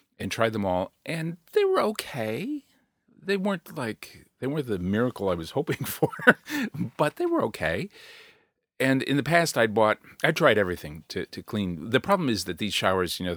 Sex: male